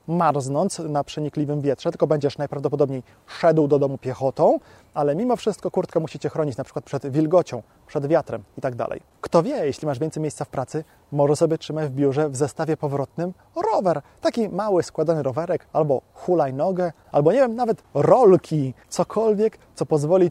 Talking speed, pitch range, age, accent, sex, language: 165 wpm, 145-180 Hz, 20-39, native, male, Polish